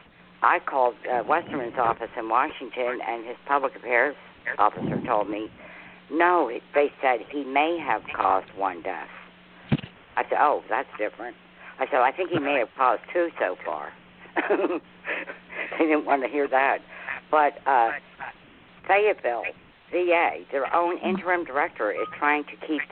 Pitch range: 120-170 Hz